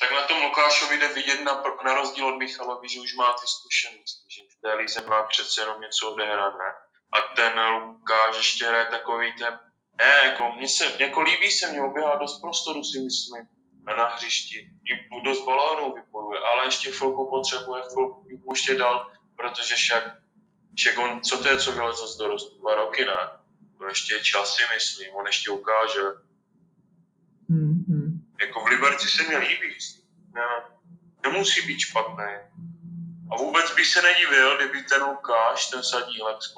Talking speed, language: 150 wpm, English